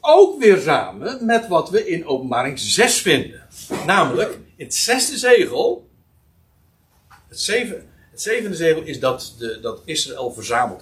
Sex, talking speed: male, 135 wpm